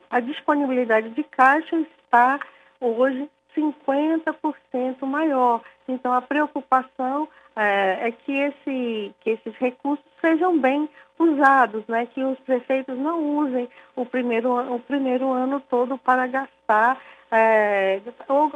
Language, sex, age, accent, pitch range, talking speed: Portuguese, female, 50-69, Brazilian, 230-285 Hz, 120 wpm